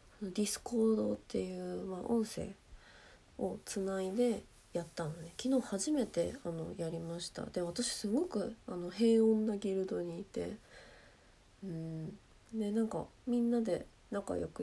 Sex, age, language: female, 20-39, Japanese